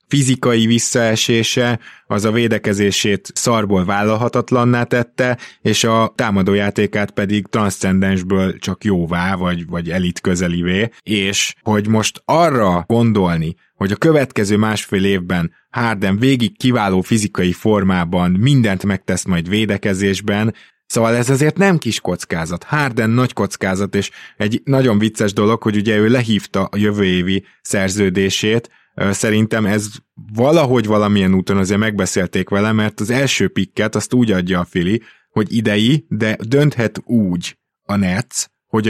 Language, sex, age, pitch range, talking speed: Hungarian, male, 20-39, 95-115 Hz, 130 wpm